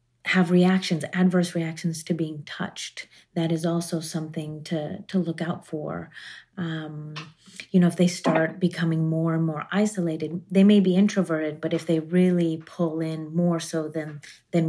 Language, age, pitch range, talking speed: English, 30-49, 155-180 Hz, 170 wpm